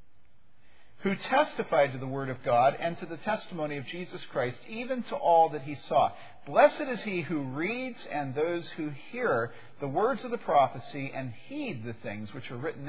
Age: 50-69